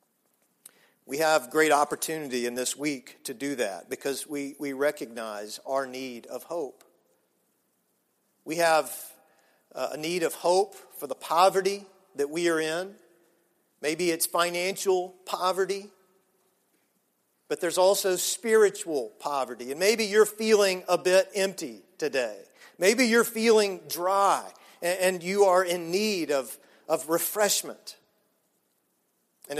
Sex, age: male, 50-69